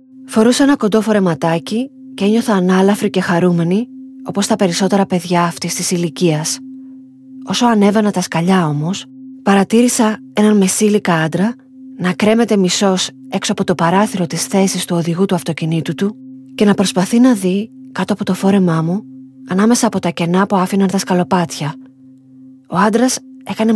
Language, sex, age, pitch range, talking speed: Greek, female, 20-39, 180-230 Hz, 150 wpm